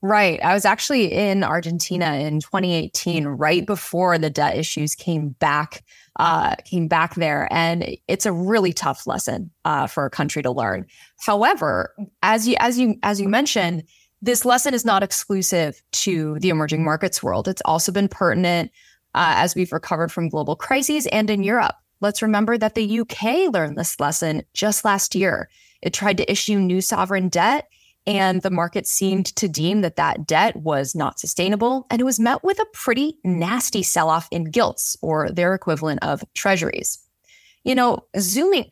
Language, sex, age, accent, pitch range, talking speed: English, female, 20-39, American, 165-220 Hz, 175 wpm